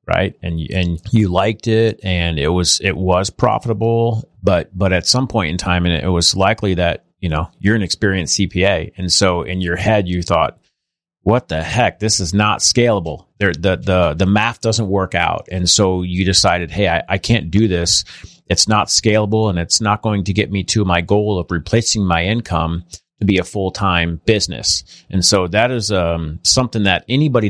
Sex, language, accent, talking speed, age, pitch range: male, English, American, 200 wpm, 30-49, 90-110 Hz